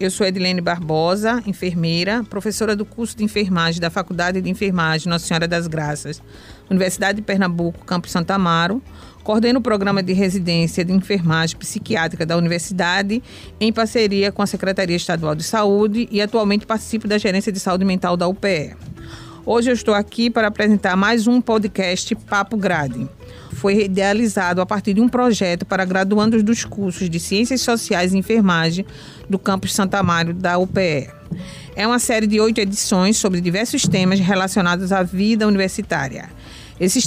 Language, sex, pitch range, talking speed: Portuguese, female, 180-220 Hz, 160 wpm